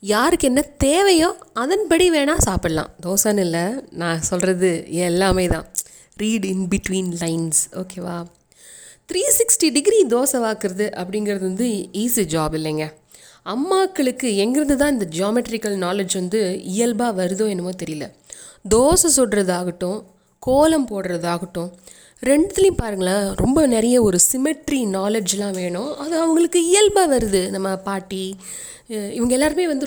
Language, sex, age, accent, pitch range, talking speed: Tamil, female, 20-39, native, 185-265 Hz, 120 wpm